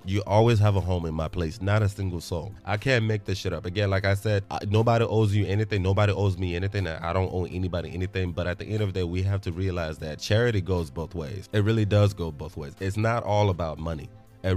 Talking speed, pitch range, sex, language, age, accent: 270 wpm, 90-105 Hz, male, English, 20-39, American